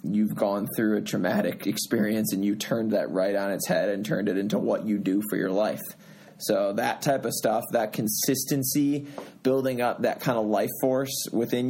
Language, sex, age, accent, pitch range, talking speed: English, male, 20-39, American, 110-130 Hz, 200 wpm